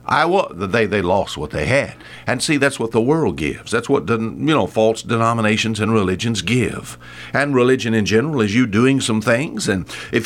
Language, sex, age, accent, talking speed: English, male, 60-79, American, 205 wpm